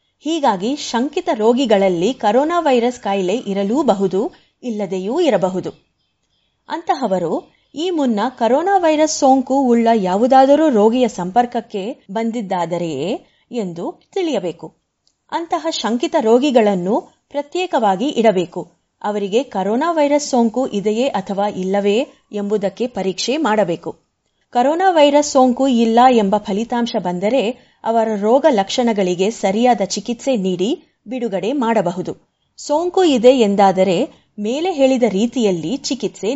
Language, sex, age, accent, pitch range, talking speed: English, female, 30-49, Indian, 200-265 Hz, 95 wpm